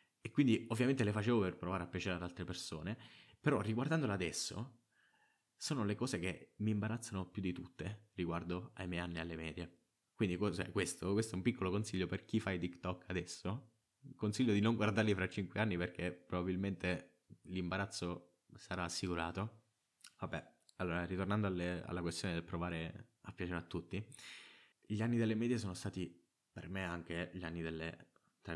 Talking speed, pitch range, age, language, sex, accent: 170 wpm, 85-105 Hz, 20-39, Italian, male, native